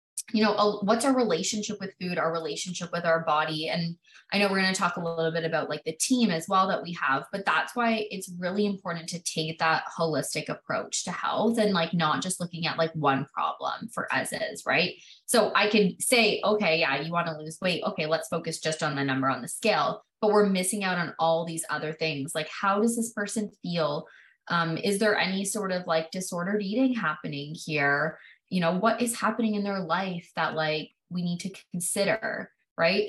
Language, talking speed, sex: English, 215 wpm, female